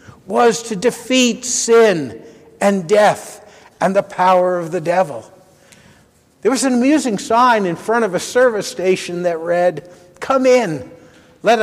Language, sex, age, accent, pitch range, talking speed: English, male, 60-79, American, 185-235 Hz, 145 wpm